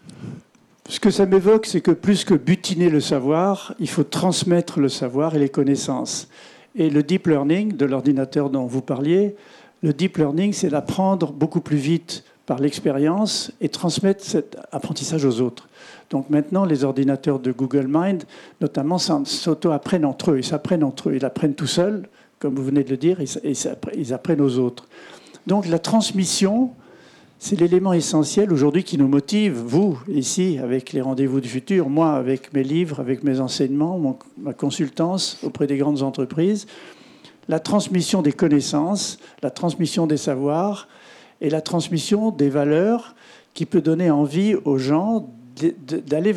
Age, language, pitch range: 50-69, French, 140-190 Hz